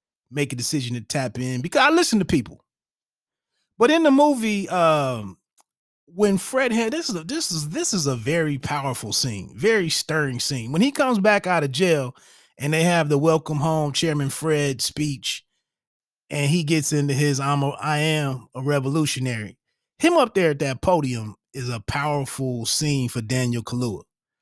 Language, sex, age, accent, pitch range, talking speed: English, male, 30-49, American, 135-180 Hz, 180 wpm